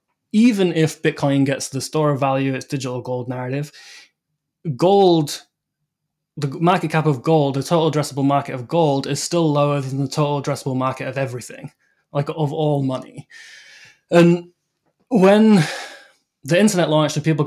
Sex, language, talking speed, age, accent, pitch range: male, English, 155 wpm, 20-39, British, 130-155 Hz